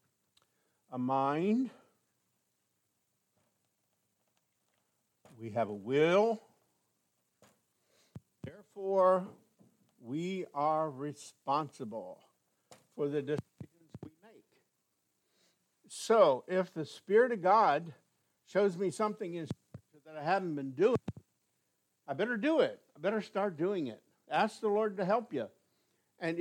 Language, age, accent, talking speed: English, 60-79, American, 100 wpm